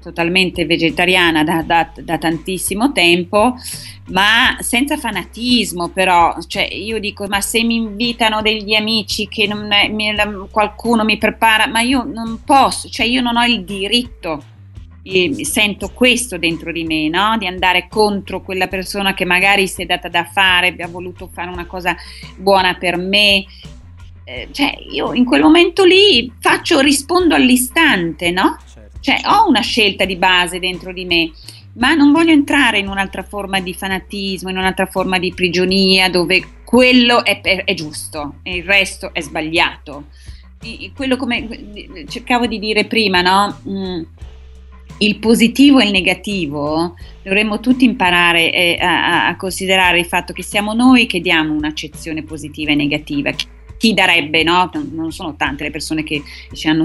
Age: 30-49